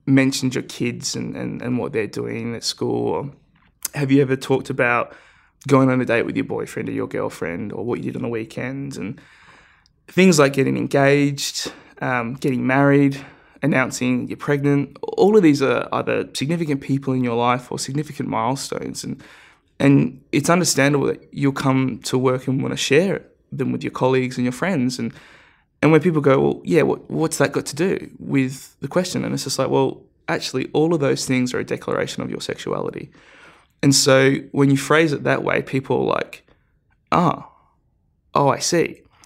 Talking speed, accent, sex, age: 190 wpm, Australian, male, 20-39